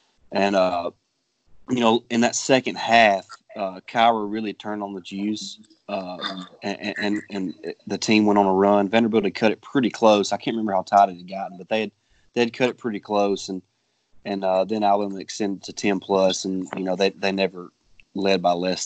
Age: 30-49